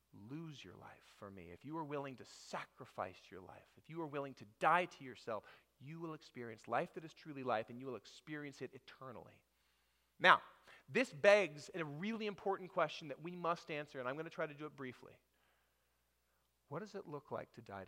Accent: American